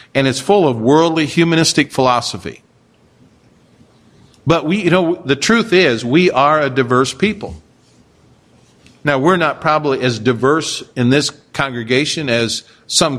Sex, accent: male, American